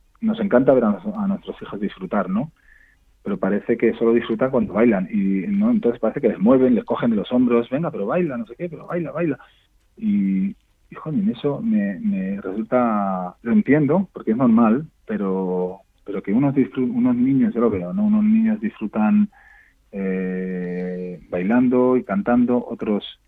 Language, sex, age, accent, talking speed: Spanish, male, 30-49, Spanish, 170 wpm